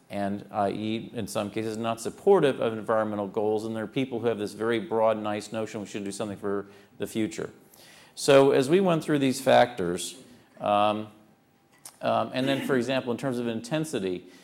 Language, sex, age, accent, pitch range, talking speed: English, male, 40-59, American, 105-135 Hz, 185 wpm